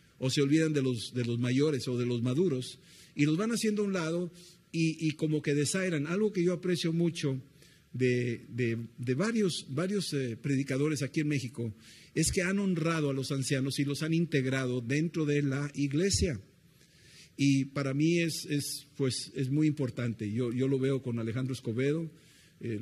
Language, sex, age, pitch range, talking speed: Spanish, male, 50-69, 130-165 Hz, 185 wpm